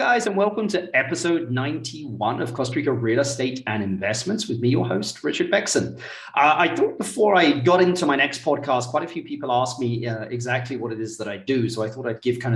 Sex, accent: male, British